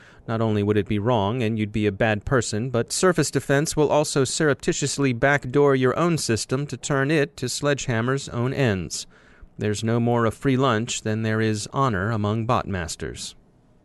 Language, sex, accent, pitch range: English, male, American, 110-135 Hz